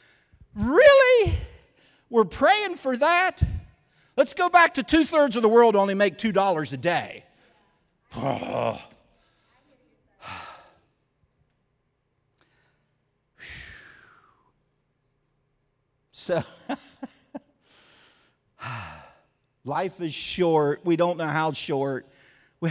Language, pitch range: English, 130-170 Hz